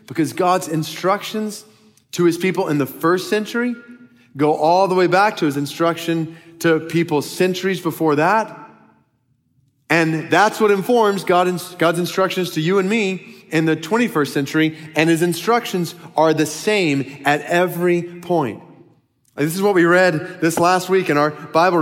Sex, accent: male, American